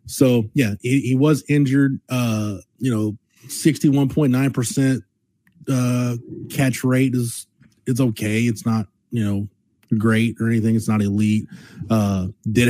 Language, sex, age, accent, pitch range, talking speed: English, male, 30-49, American, 115-140 Hz, 140 wpm